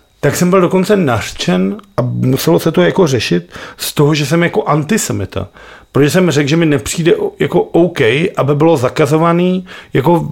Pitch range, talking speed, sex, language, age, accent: 130-170 Hz, 170 wpm, male, Czech, 40-59, native